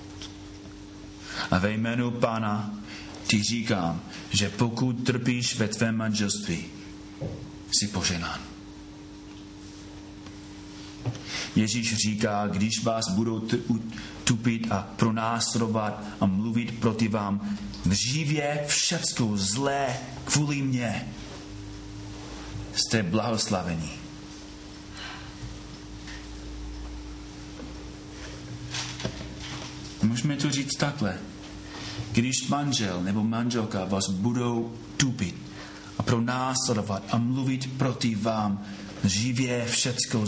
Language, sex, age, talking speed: Czech, male, 40-59, 80 wpm